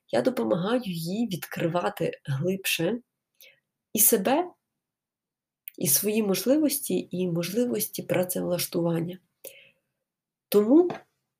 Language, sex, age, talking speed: Ukrainian, female, 20-39, 75 wpm